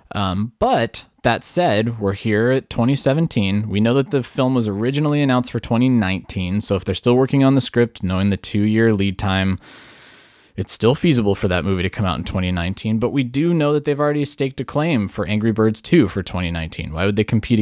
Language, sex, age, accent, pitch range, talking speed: English, male, 20-39, American, 95-125 Hz, 215 wpm